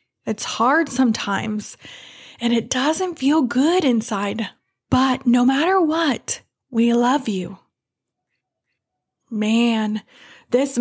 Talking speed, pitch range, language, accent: 100 wpm, 215-260 Hz, English, American